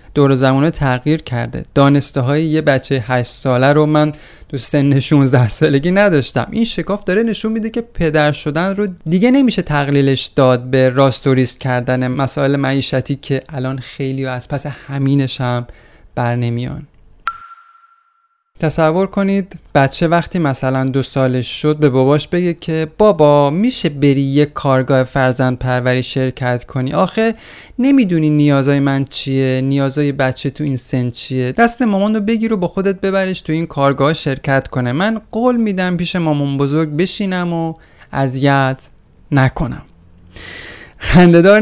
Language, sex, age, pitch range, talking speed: Persian, male, 30-49, 130-170 Hz, 145 wpm